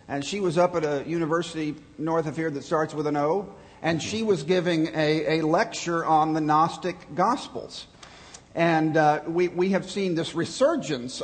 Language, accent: English, American